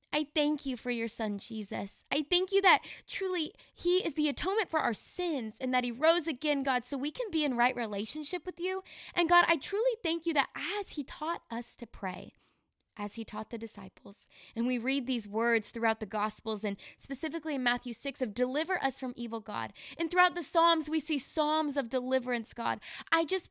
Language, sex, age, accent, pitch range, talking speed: English, female, 20-39, American, 240-325 Hz, 210 wpm